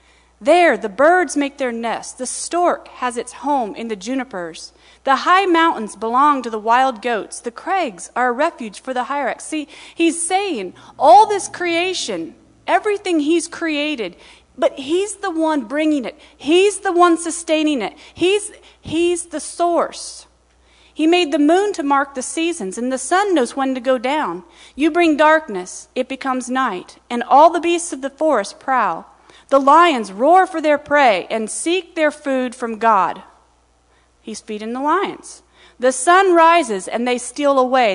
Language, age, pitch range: English, 40-59, 240-335 Hz